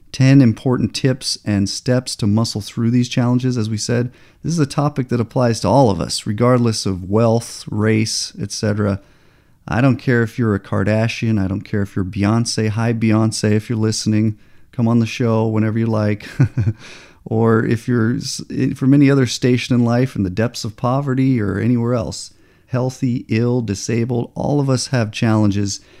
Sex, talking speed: male, 180 wpm